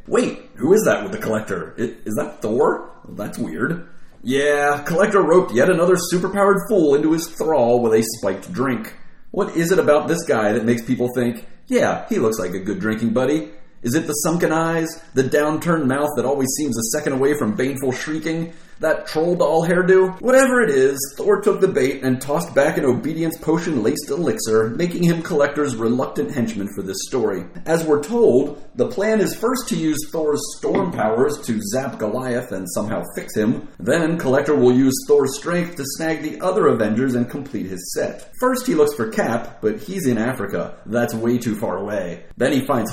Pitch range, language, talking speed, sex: 120-170 Hz, English, 195 wpm, male